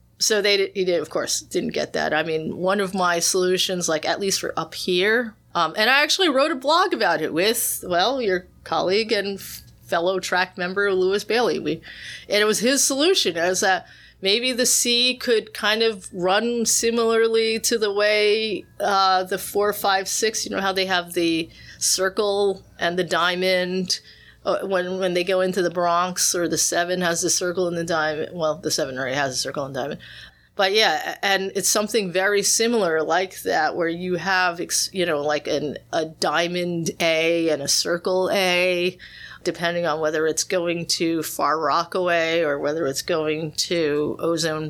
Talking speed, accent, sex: 185 wpm, American, female